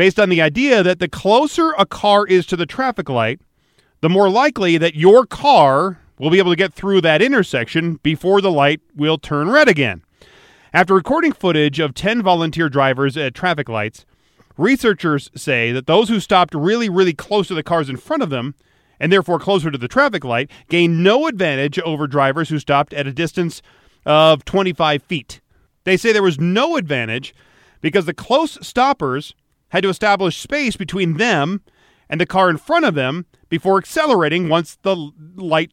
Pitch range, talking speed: 145-195 Hz, 185 wpm